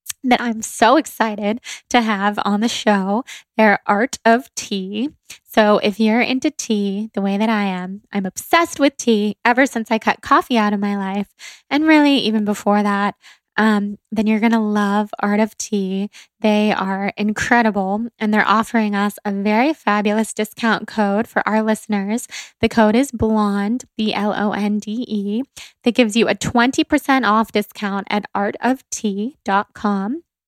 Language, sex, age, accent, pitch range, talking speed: English, female, 10-29, American, 205-235 Hz, 155 wpm